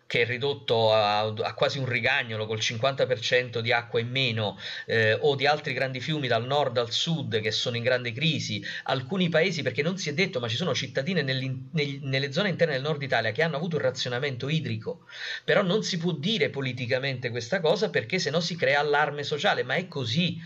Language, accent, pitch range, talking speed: Italian, native, 120-160 Hz, 205 wpm